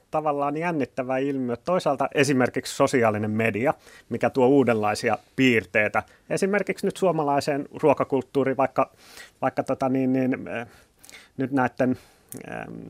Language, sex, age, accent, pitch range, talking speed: Finnish, male, 30-49, native, 120-155 Hz, 100 wpm